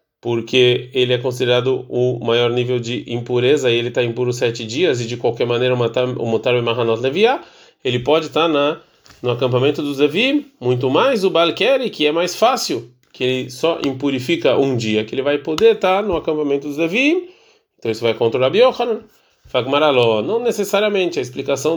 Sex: male